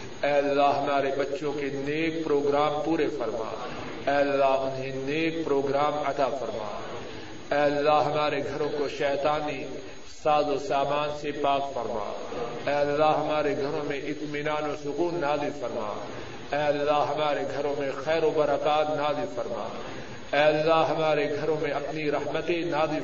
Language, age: Urdu, 50-69